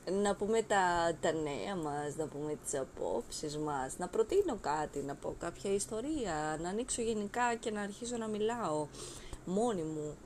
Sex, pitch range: female, 175-220 Hz